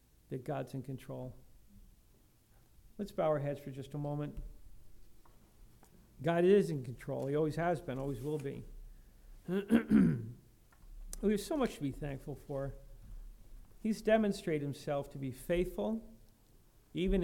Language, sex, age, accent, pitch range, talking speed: English, male, 50-69, American, 115-175 Hz, 130 wpm